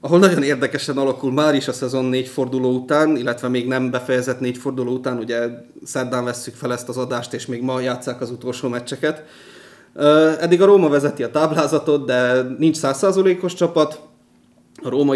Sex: male